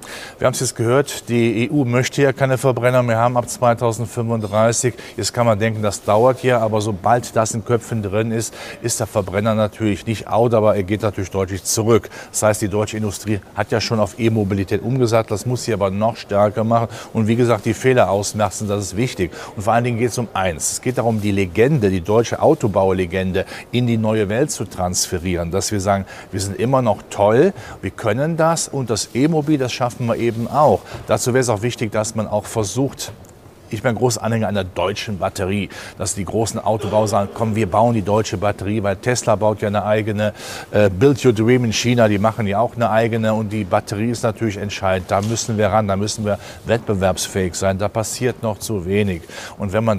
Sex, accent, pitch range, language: male, German, 100-120 Hz, German